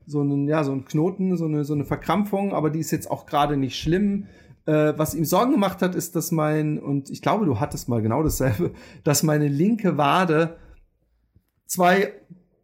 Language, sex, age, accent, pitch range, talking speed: German, male, 30-49, German, 145-180 Hz, 190 wpm